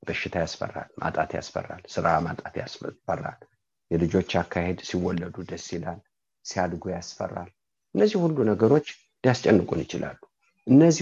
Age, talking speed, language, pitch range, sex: 50-69, 120 wpm, English, 90-135 Hz, male